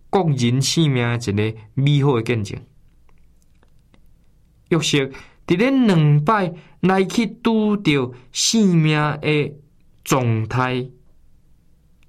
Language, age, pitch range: Chinese, 20-39, 115-175 Hz